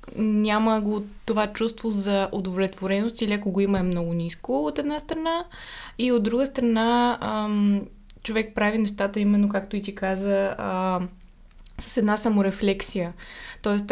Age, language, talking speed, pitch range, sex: 20-39, Bulgarian, 145 wpm, 195-225 Hz, female